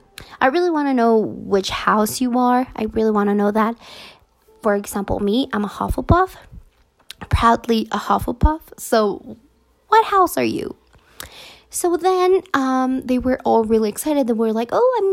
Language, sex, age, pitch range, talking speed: English, female, 20-39, 225-305 Hz, 165 wpm